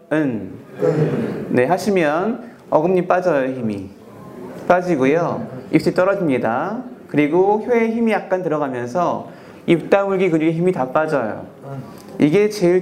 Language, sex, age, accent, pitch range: Korean, male, 30-49, native, 150-205 Hz